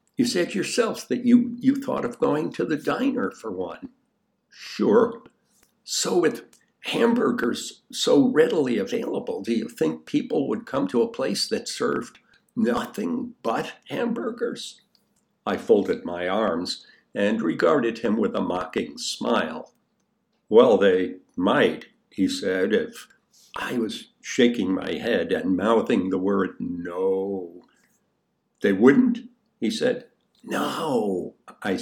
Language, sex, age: English, male, 60-79